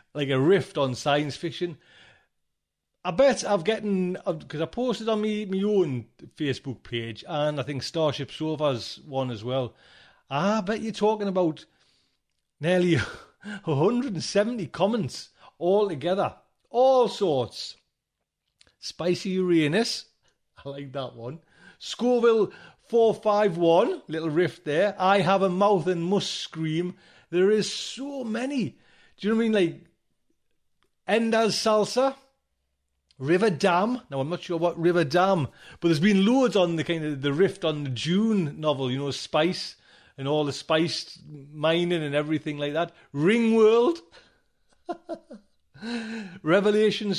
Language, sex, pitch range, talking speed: English, male, 155-215 Hz, 140 wpm